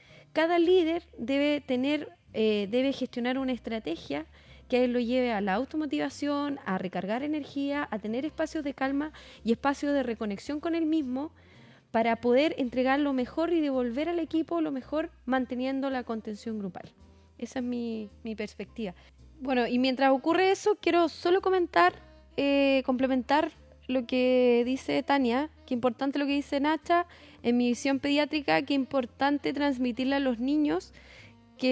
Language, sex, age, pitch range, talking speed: Spanish, female, 20-39, 235-290 Hz, 155 wpm